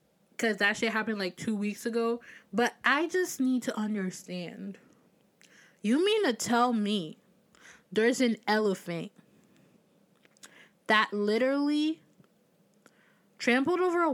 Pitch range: 205-275 Hz